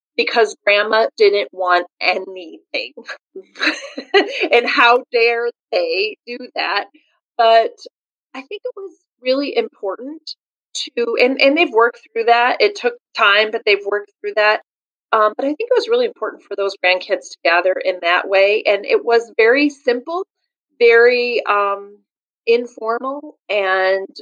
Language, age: English, 30-49